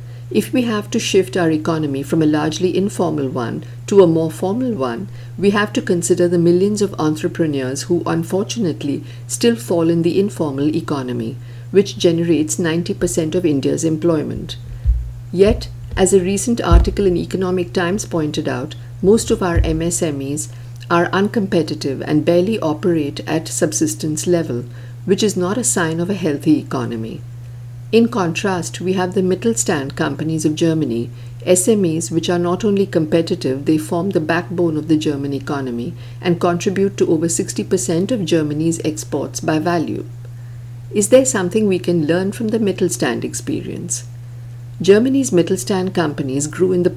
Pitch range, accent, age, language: 135-185 Hz, Indian, 50-69, English